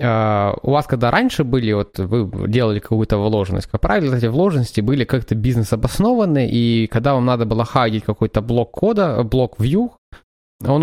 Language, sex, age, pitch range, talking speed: Ukrainian, male, 20-39, 110-135 Hz, 170 wpm